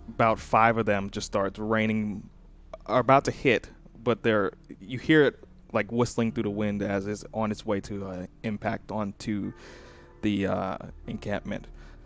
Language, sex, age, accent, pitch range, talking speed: English, male, 20-39, American, 95-115 Hz, 165 wpm